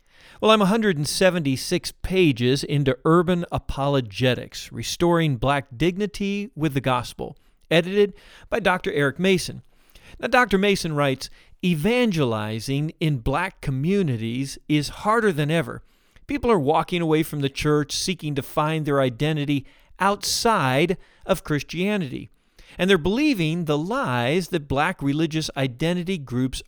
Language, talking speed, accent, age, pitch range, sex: English, 125 wpm, American, 40-59, 135-190 Hz, male